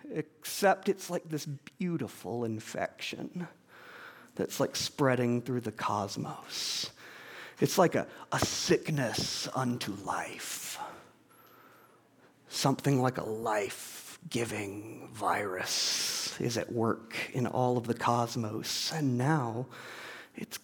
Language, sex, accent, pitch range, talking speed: English, male, American, 120-175 Hz, 100 wpm